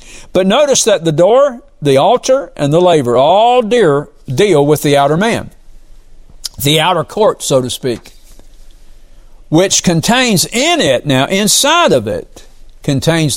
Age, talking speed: 60-79, 140 wpm